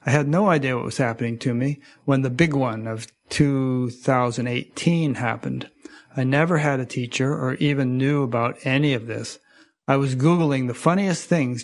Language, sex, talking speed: English, male, 175 wpm